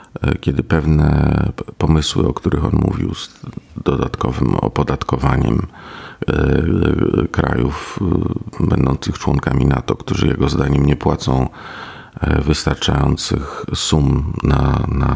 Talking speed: 85 wpm